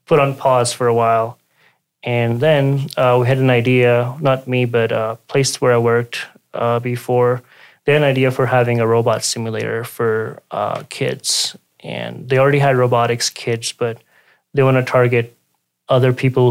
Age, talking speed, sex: 20-39, 175 wpm, male